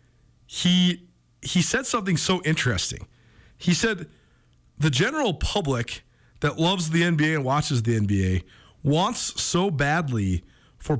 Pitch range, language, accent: 150-205 Hz, English, American